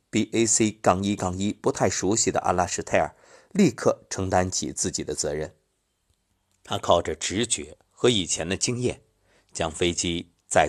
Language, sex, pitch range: Chinese, male, 85-120 Hz